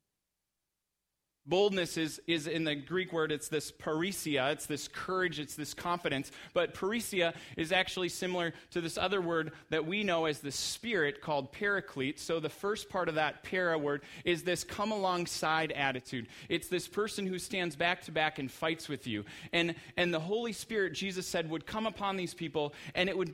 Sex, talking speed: male, 190 wpm